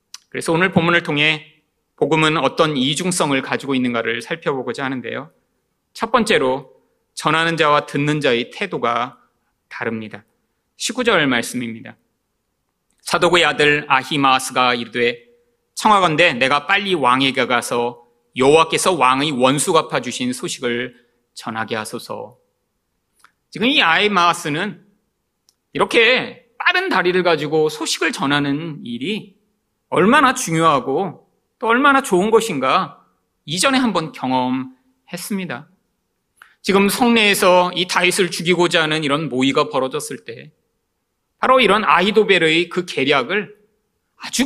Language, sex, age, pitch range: Korean, male, 30-49, 130-205 Hz